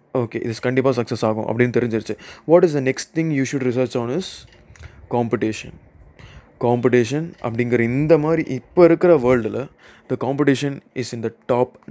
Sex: male